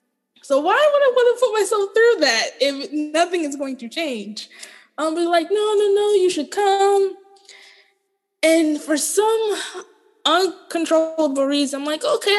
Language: English